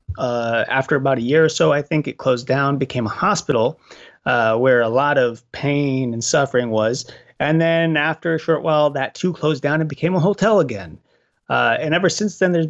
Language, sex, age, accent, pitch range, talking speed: English, male, 30-49, American, 120-160 Hz, 215 wpm